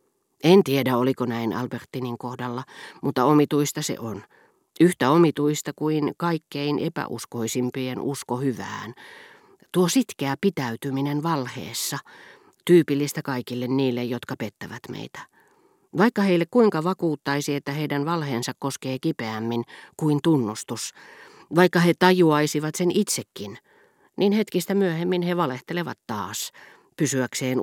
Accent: native